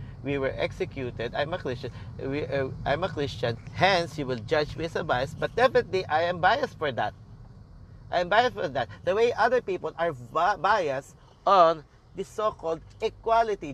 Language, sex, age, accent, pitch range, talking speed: English, male, 40-59, Filipino, 125-175 Hz, 185 wpm